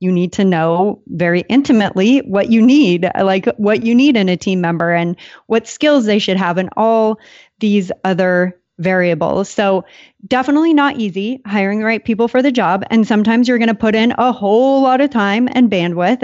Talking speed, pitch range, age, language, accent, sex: 195 wpm, 185-245 Hz, 30-49, English, American, female